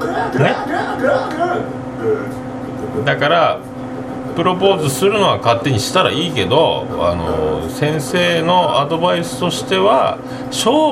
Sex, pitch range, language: male, 125-180 Hz, Japanese